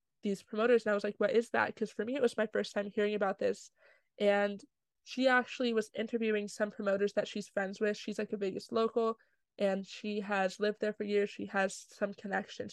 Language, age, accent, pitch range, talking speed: English, 20-39, American, 205-230 Hz, 220 wpm